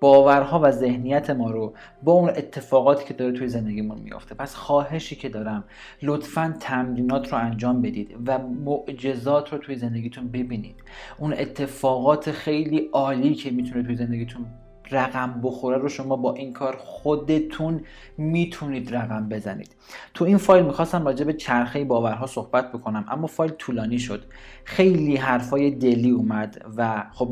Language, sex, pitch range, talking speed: Persian, male, 120-155 Hz, 150 wpm